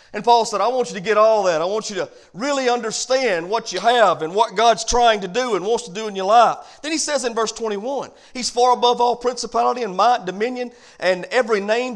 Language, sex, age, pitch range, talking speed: English, male, 40-59, 195-260 Hz, 245 wpm